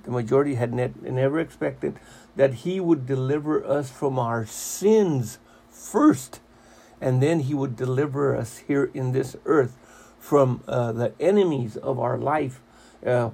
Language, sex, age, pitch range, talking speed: English, male, 60-79, 125-155 Hz, 145 wpm